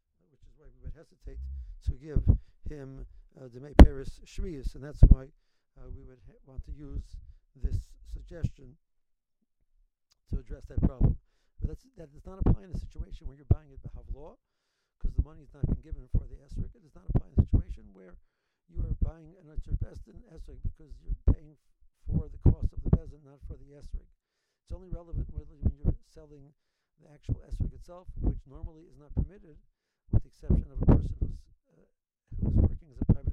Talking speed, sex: 190 wpm, male